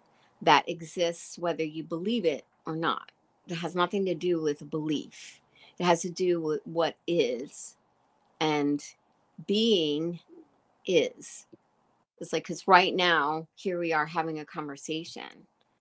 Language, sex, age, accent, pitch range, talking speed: English, female, 40-59, American, 160-195 Hz, 135 wpm